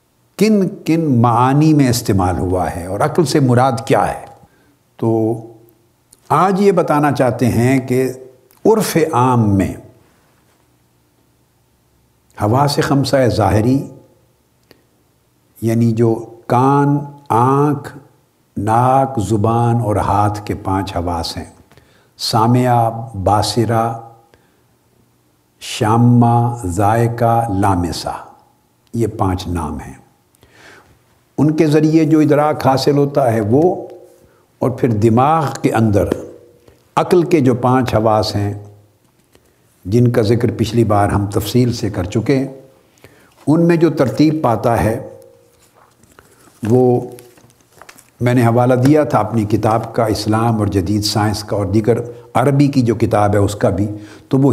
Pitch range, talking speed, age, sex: 105-135 Hz, 120 wpm, 60-79, male